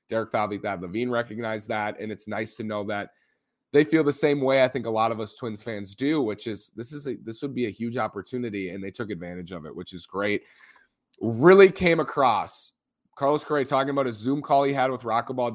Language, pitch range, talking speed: English, 105-135 Hz, 235 wpm